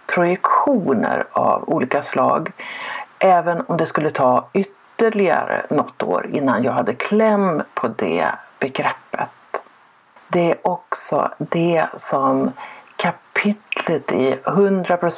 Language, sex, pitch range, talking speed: Swedish, female, 155-200 Hz, 105 wpm